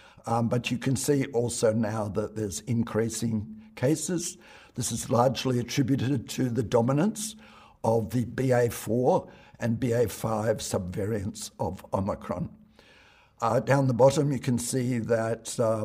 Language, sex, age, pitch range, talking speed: English, male, 60-79, 110-125 Hz, 135 wpm